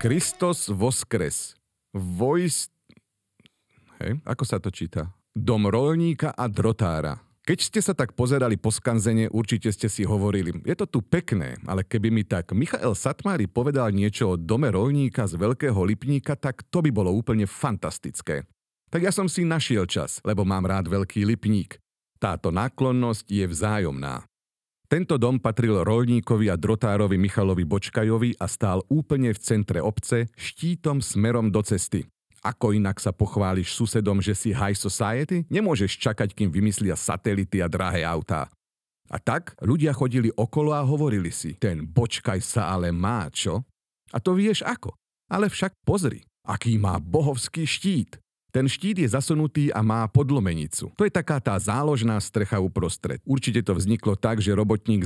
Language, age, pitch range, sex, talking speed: Slovak, 40-59, 100-140 Hz, male, 155 wpm